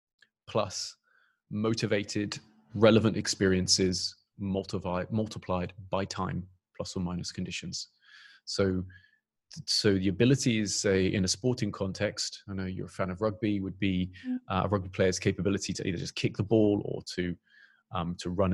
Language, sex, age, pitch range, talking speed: English, male, 30-49, 95-110 Hz, 150 wpm